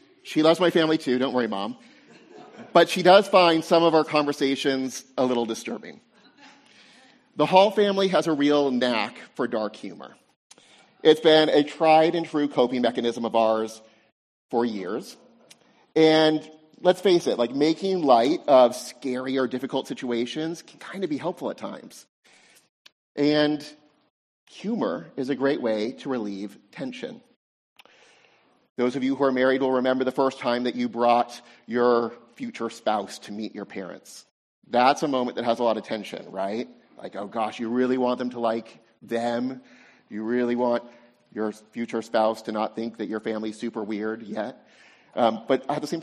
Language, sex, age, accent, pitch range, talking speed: English, male, 30-49, American, 115-155 Hz, 165 wpm